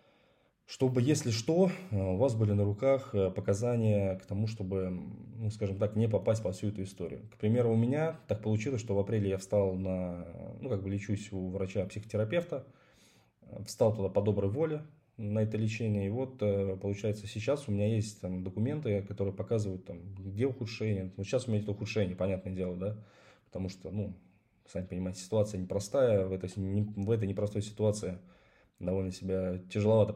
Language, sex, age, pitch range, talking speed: Russian, male, 20-39, 95-110 Hz, 165 wpm